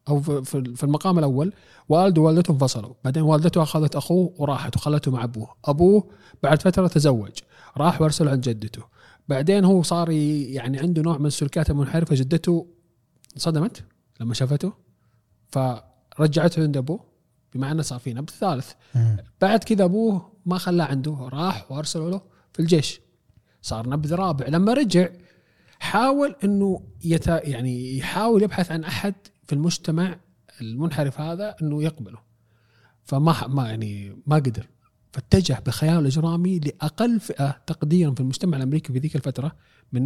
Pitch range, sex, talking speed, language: 125-170 Hz, male, 140 wpm, Arabic